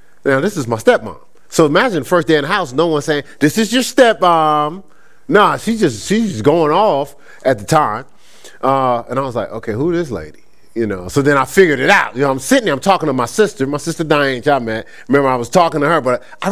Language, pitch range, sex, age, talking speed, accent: English, 110-180 Hz, male, 30-49, 255 wpm, American